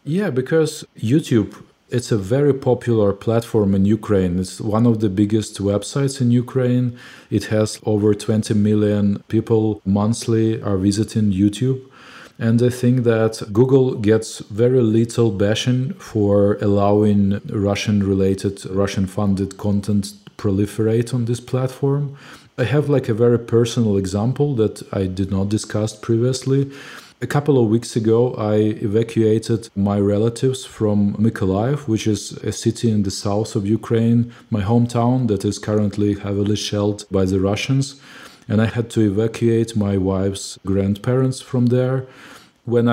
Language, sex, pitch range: English, male, 105-120 Hz